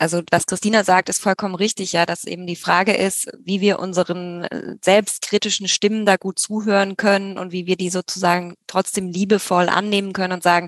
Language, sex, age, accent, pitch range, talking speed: German, female, 20-39, German, 180-205 Hz, 185 wpm